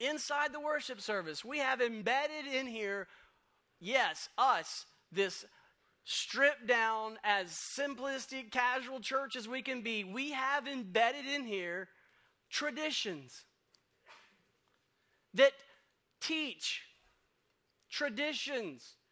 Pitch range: 235-285 Hz